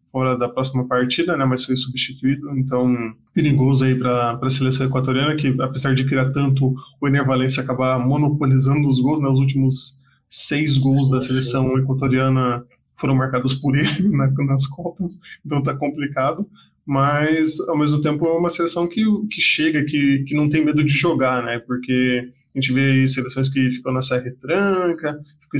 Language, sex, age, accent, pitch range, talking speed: Portuguese, male, 20-39, Brazilian, 130-150 Hz, 175 wpm